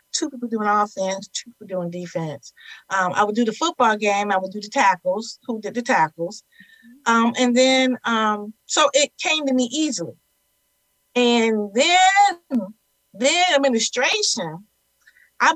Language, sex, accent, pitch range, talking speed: English, female, American, 190-245 Hz, 150 wpm